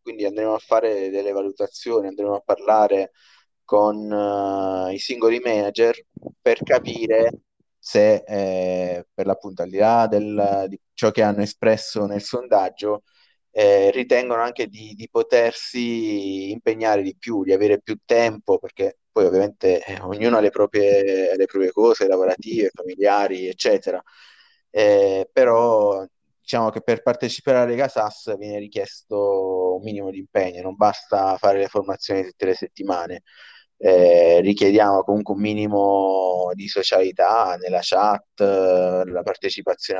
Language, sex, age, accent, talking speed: Italian, male, 20-39, native, 130 wpm